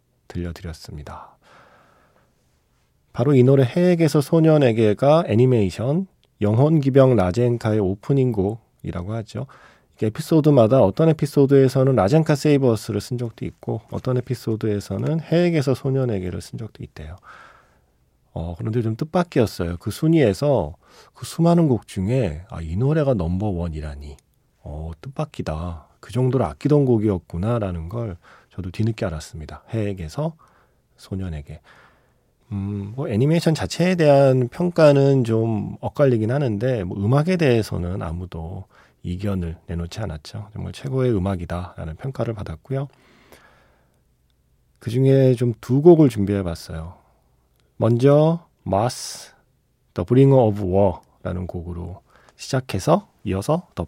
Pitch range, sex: 90-135 Hz, male